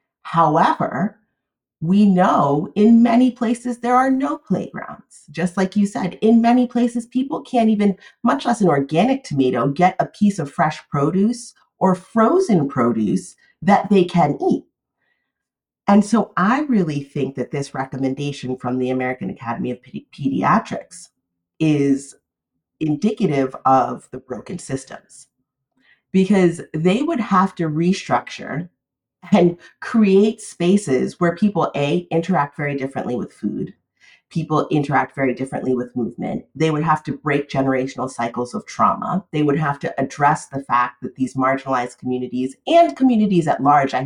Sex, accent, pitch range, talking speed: female, American, 140-200 Hz, 145 wpm